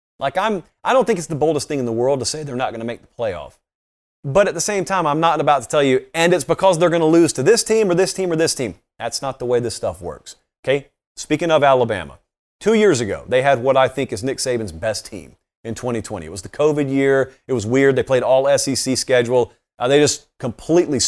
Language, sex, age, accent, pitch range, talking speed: English, male, 40-59, American, 125-170 Hz, 260 wpm